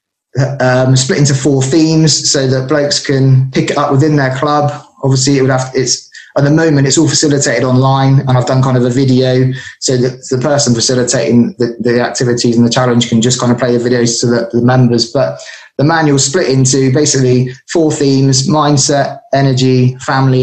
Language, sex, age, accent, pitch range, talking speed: English, male, 20-39, British, 130-145 Hz, 200 wpm